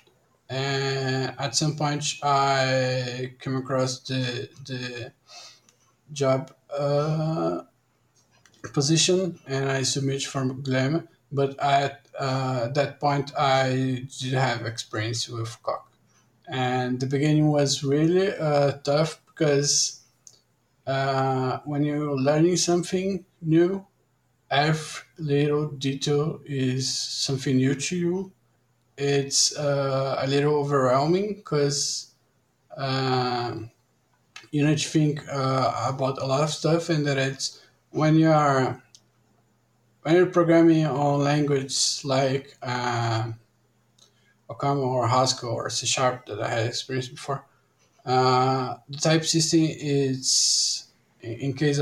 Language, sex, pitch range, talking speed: English, male, 130-150 Hz, 115 wpm